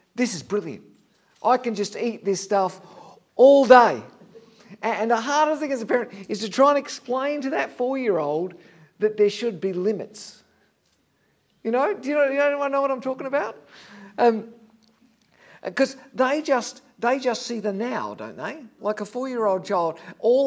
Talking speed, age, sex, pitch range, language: 175 wpm, 50-69, male, 175-230 Hz, English